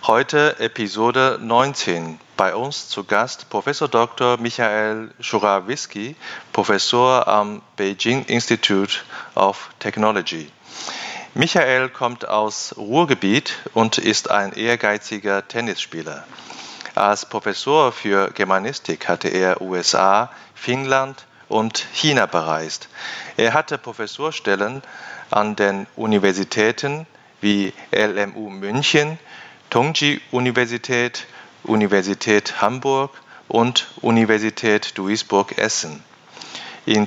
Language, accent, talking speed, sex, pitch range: German, German, 90 wpm, male, 100-125 Hz